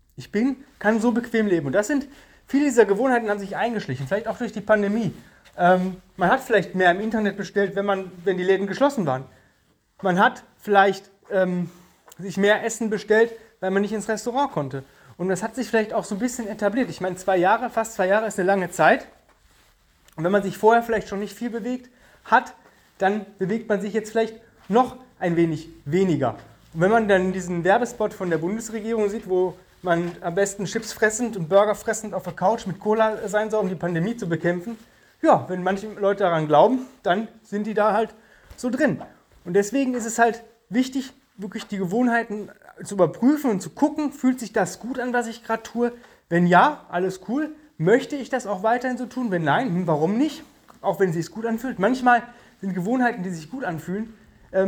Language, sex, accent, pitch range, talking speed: German, male, German, 185-230 Hz, 205 wpm